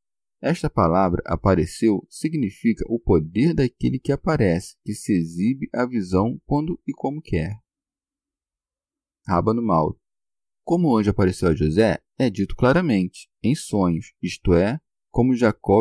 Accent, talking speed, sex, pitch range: Brazilian, 135 wpm, male, 90-120 Hz